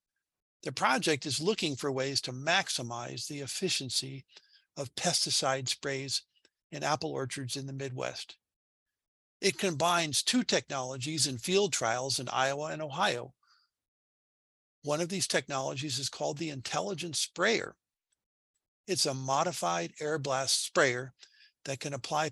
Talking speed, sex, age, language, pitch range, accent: 130 wpm, male, 50-69, English, 130-170 Hz, American